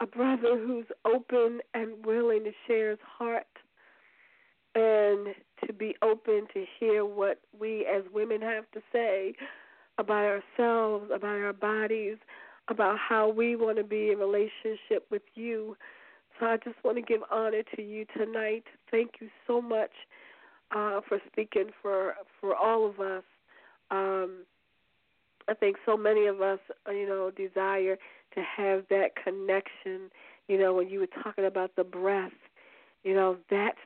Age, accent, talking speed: 40-59, American, 150 wpm